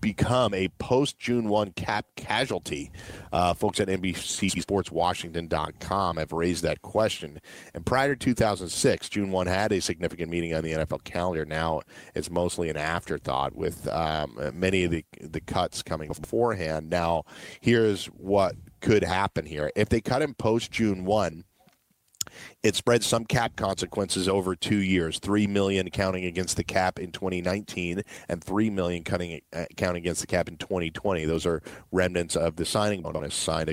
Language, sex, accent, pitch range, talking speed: English, male, American, 90-110 Hz, 160 wpm